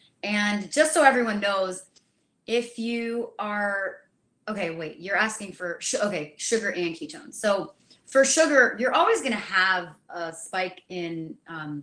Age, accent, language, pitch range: 30-49, American, English, 170-220 Hz